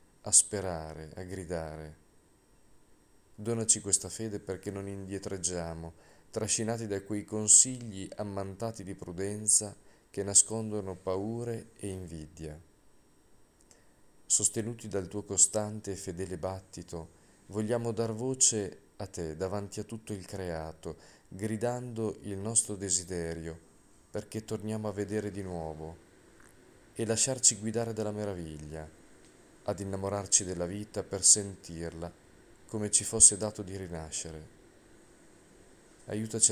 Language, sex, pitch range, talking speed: Italian, male, 90-110 Hz, 110 wpm